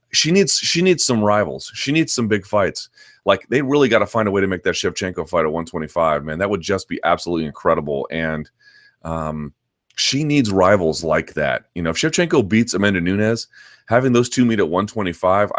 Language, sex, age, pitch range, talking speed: English, male, 30-49, 90-125 Hz, 205 wpm